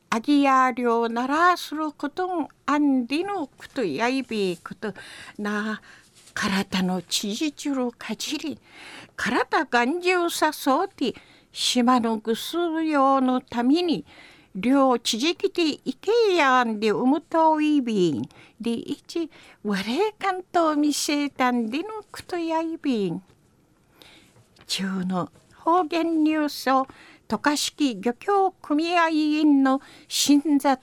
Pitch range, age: 240-330 Hz, 50-69